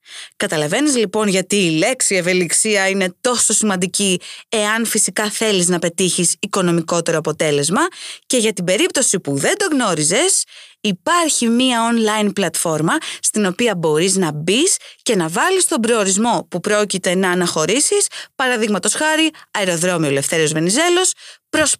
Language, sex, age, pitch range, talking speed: Greek, female, 20-39, 180-285 Hz, 135 wpm